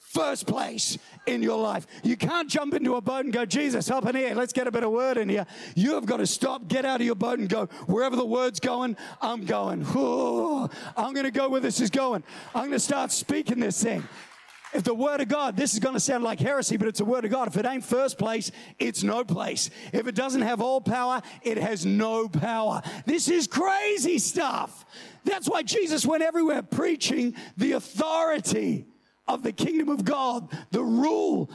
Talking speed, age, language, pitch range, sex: 215 wpm, 40-59, English, 215-265 Hz, male